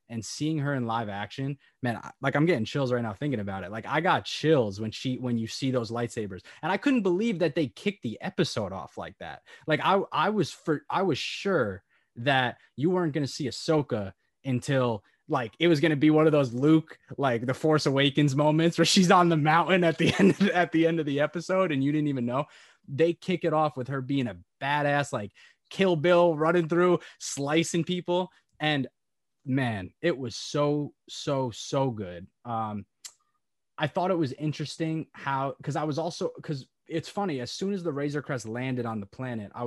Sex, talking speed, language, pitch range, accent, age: male, 210 wpm, English, 115-155 Hz, American, 20-39